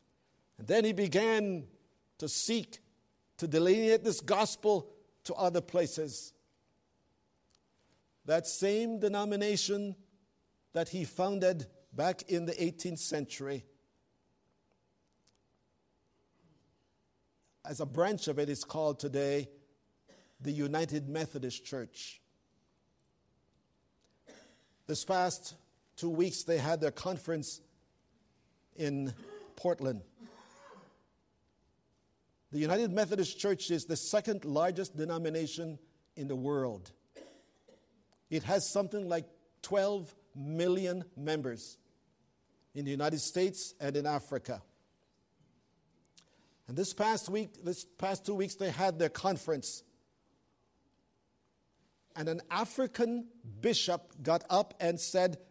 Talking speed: 100 wpm